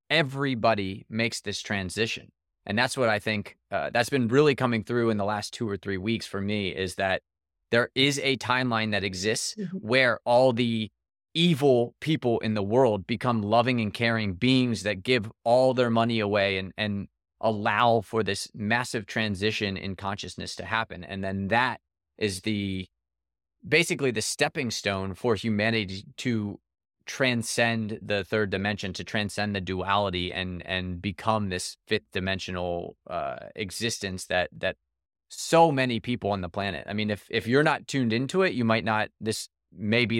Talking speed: 170 wpm